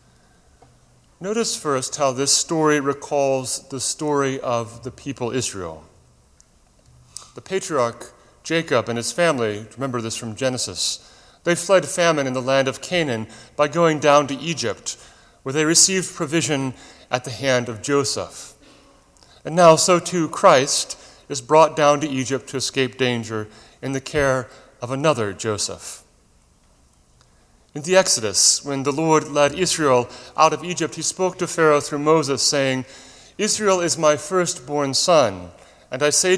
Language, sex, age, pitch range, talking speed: English, male, 30-49, 115-155 Hz, 145 wpm